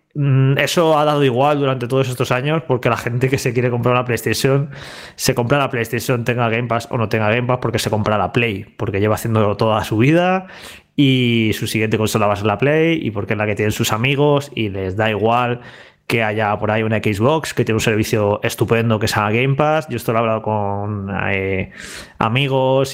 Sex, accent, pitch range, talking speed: male, Spanish, 110-135 Hz, 220 wpm